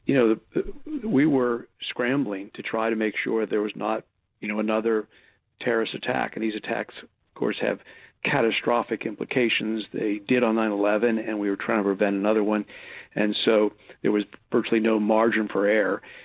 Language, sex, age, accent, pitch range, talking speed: English, male, 50-69, American, 105-125 Hz, 175 wpm